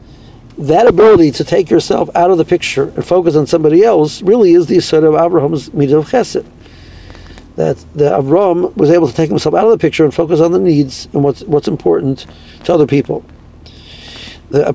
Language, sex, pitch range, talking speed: English, male, 135-170 Hz, 190 wpm